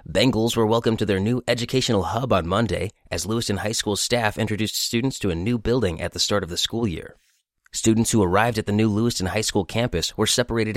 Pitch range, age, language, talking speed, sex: 90-115 Hz, 30-49, English, 225 wpm, male